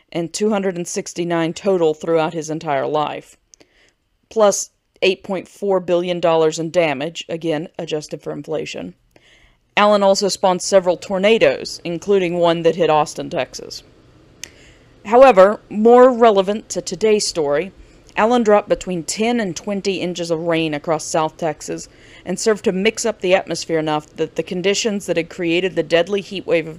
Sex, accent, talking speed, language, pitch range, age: female, American, 145 wpm, English, 160-200 Hz, 40-59